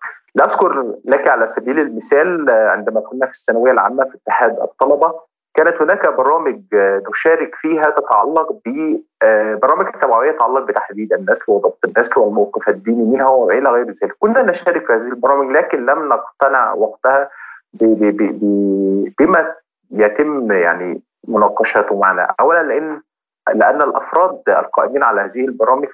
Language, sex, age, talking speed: Arabic, male, 30-49, 130 wpm